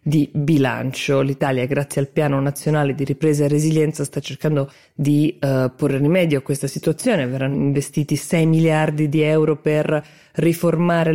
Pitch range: 140-160 Hz